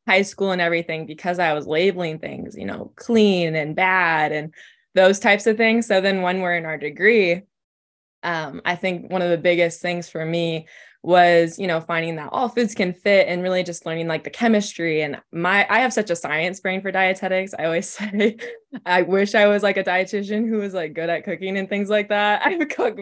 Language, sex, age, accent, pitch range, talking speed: English, female, 20-39, American, 160-195 Hz, 220 wpm